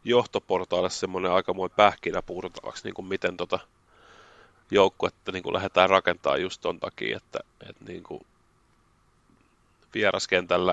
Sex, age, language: male, 30-49, Finnish